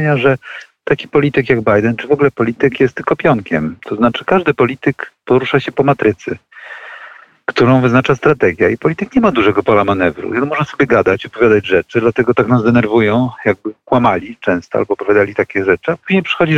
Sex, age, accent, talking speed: male, 40-59, native, 185 wpm